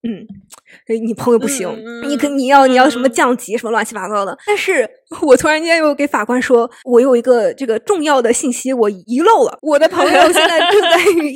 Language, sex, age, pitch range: Chinese, female, 20-39, 235-335 Hz